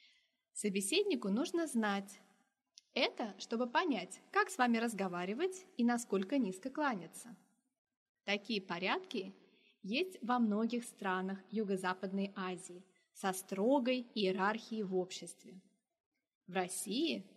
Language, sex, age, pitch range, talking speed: Turkish, female, 20-39, 195-265 Hz, 100 wpm